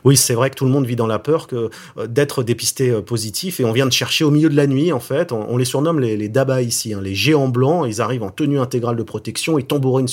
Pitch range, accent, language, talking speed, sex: 110-135 Hz, French, French, 295 wpm, male